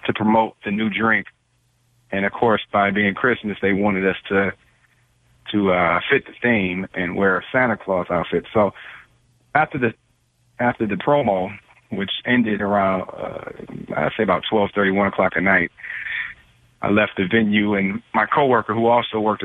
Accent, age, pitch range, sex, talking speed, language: American, 40-59, 100-120 Hz, male, 170 wpm, English